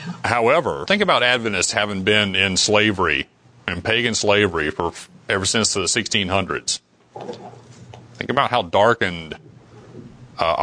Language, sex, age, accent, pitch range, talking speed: English, male, 40-59, American, 95-120 Hz, 120 wpm